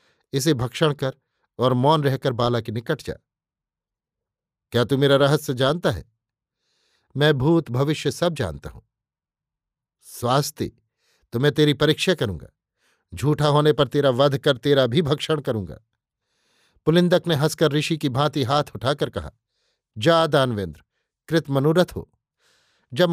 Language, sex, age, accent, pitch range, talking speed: Hindi, male, 50-69, native, 130-155 Hz, 135 wpm